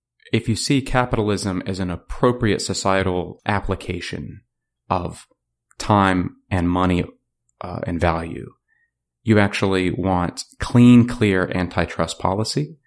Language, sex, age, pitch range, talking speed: English, male, 30-49, 90-110 Hz, 105 wpm